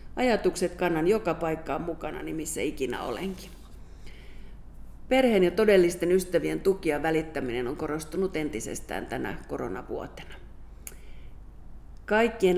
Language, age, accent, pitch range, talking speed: Finnish, 50-69, native, 160-200 Hz, 100 wpm